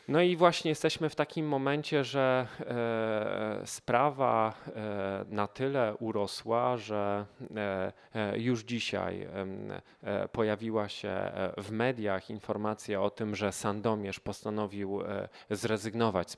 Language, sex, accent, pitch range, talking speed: Polish, male, native, 100-115 Hz, 100 wpm